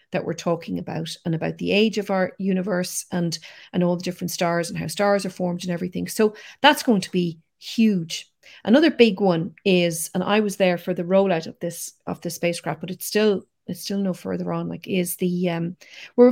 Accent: Irish